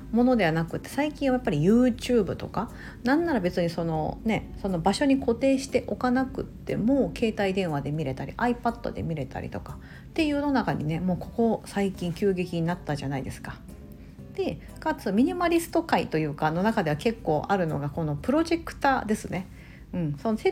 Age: 50-69